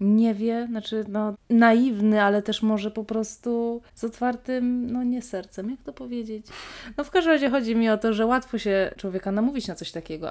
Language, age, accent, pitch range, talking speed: Polish, 20-39, native, 185-230 Hz, 190 wpm